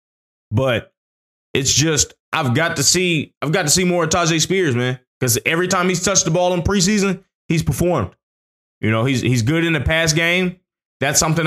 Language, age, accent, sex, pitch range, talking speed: English, 20-39, American, male, 125-160 Hz, 200 wpm